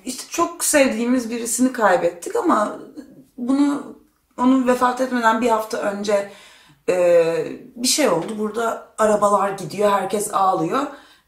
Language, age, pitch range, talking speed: Turkish, 30-49, 185-290 Hz, 115 wpm